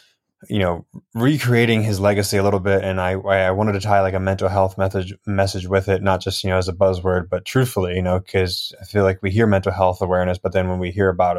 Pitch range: 90-100 Hz